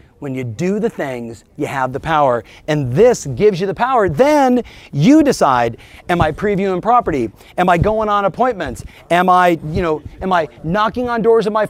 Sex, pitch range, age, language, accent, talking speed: male, 160-230 Hz, 40-59, English, American, 195 wpm